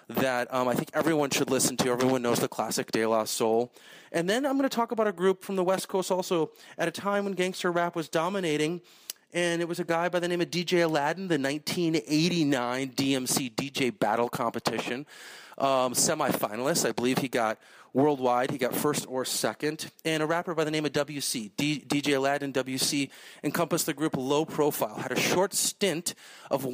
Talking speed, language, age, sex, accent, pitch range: 195 wpm, English, 30-49, male, American, 130-160 Hz